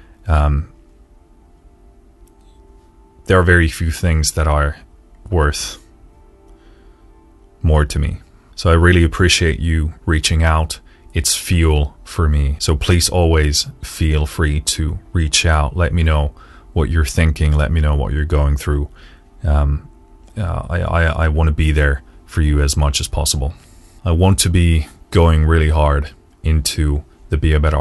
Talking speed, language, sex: 155 wpm, English, male